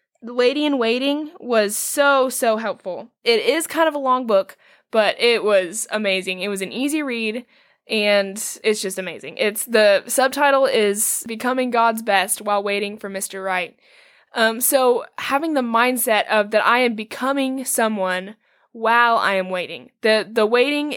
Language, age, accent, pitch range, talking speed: English, 10-29, American, 195-250 Hz, 165 wpm